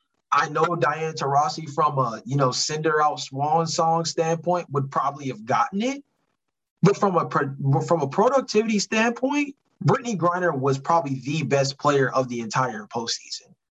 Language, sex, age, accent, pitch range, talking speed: English, male, 20-39, American, 140-180 Hz, 155 wpm